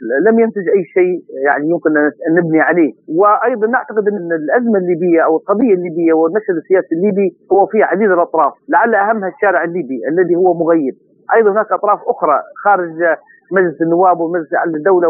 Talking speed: 165 wpm